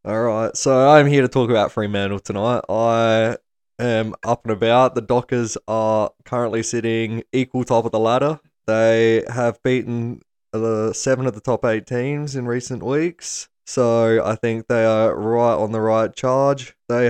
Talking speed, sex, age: 170 wpm, male, 20-39